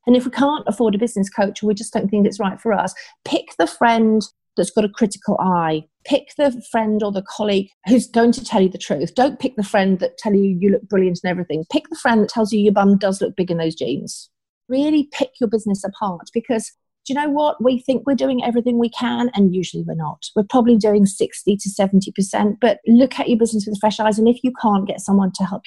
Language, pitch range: English, 190-235 Hz